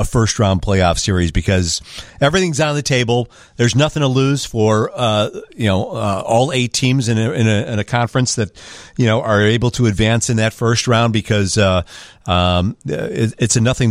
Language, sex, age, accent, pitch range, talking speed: English, male, 40-59, American, 105-130 Hz, 200 wpm